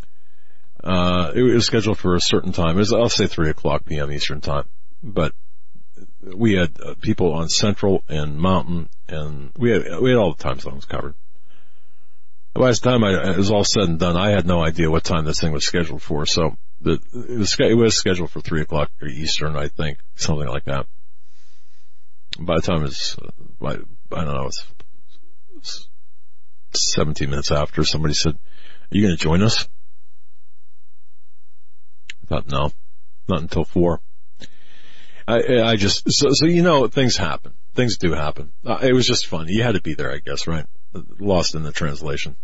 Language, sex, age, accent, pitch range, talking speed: English, male, 50-69, American, 75-105 Hz, 185 wpm